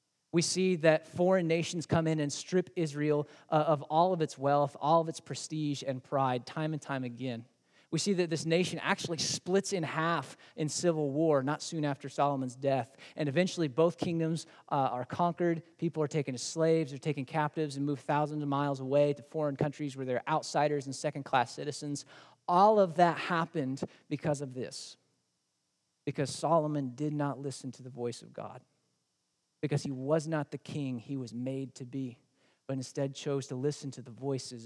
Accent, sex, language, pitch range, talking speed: American, male, English, 130-155 Hz, 190 wpm